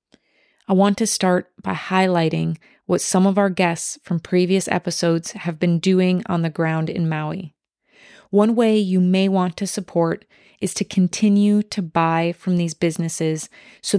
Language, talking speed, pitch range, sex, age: English, 165 wpm, 170-195 Hz, female, 30-49